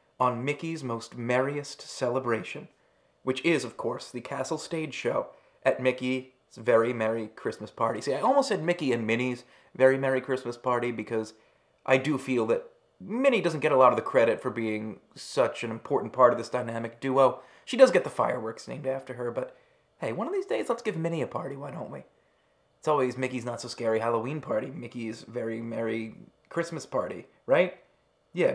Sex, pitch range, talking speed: male, 120-175 Hz, 185 wpm